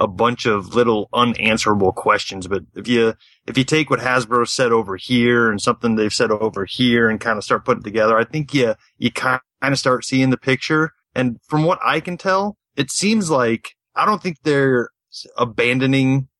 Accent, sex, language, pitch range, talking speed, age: American, male, English, 110-130 Hz, 200 wpm, 30-49